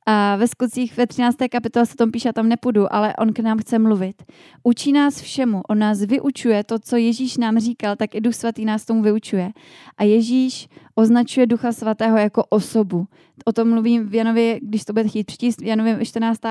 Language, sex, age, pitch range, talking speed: Czech, female, 20-39, 200-230 Hz, 200 wpm